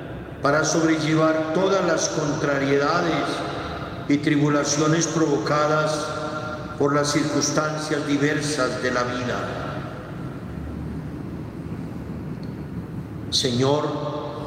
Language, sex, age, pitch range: Spanish, male, 50-69, 140-160 Hz